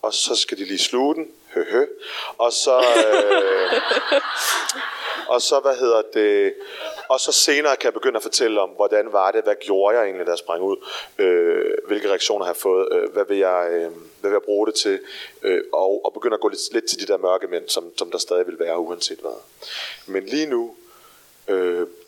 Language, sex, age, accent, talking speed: Danish, male, 30-49, native, 200 wpm